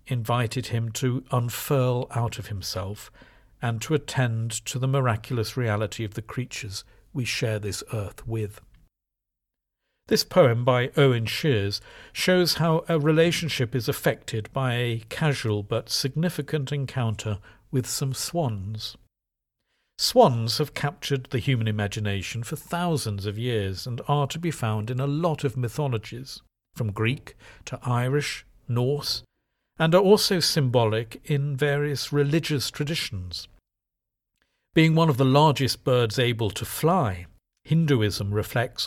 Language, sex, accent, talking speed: English, male, British, 135 wpm